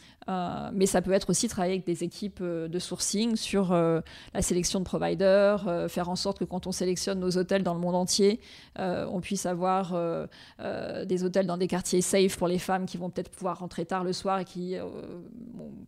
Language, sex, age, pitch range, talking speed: French, female, 20-39, 175-195 Hz, 225 wpm